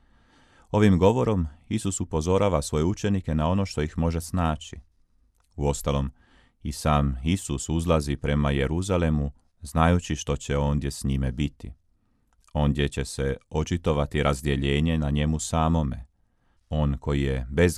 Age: 40-59